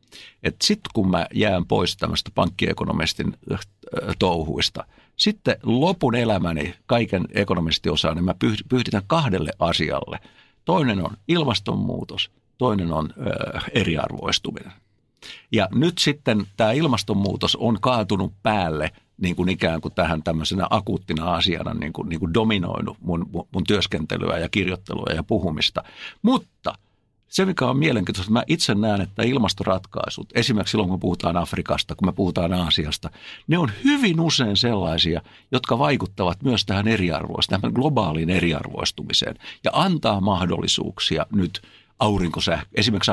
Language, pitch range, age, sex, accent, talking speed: Finnish, 85-115 Hz, 60-79, male, native, 125 wpm